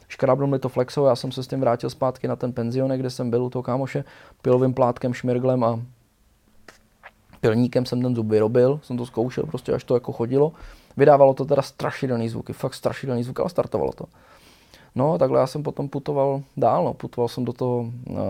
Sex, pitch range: male, 115-125 Hz